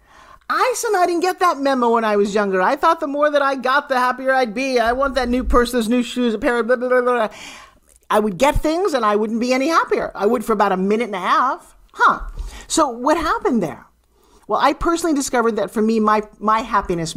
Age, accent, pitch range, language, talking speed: 40-59, American, 210-280 Hz, English, 245 wpm